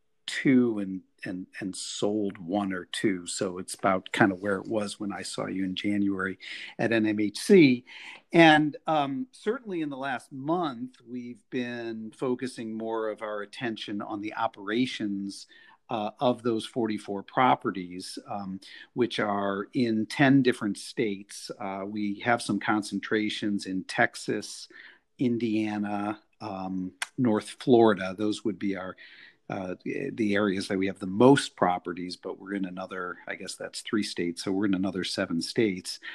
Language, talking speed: English, 155 wpm